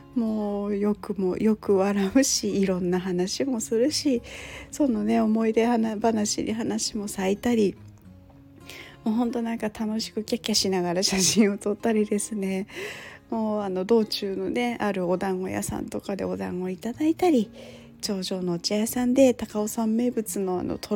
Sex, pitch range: female, 185-230 Hz